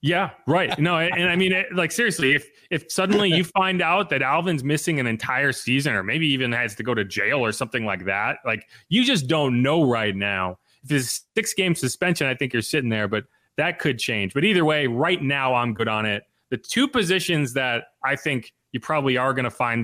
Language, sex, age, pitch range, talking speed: English, male, 30-49, 110-145 Hz, 225 wpm